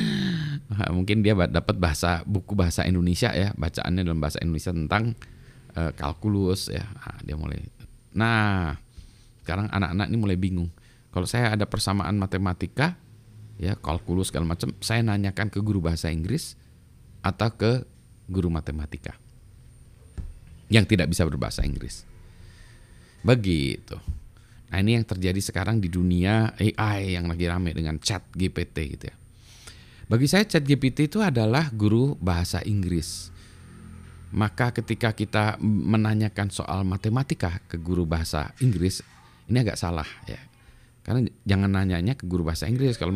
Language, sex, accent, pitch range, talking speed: Indonesian, male, native, 85-110 Hz, 130 wpm